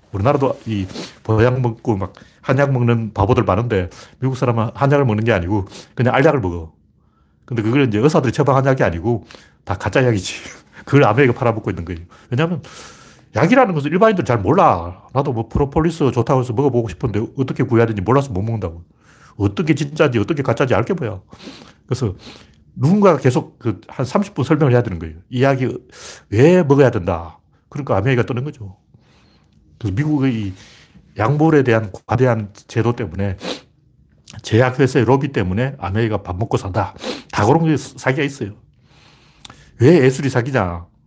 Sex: male